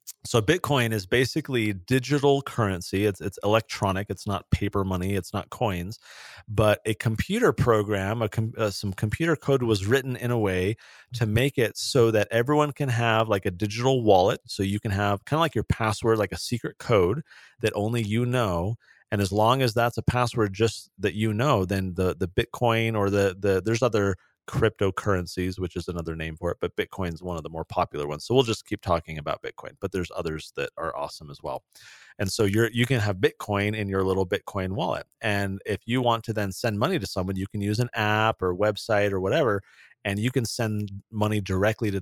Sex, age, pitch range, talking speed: male, 30-49, 95-115 Hz, 210 wpm